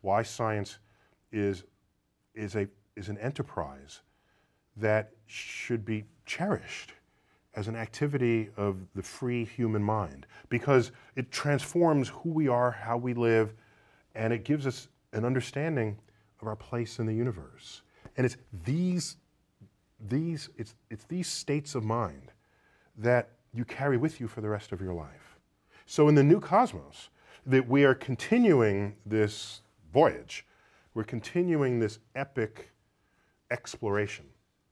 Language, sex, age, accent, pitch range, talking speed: English, male, 40-59, American, 100-130 Hz, 135 wpm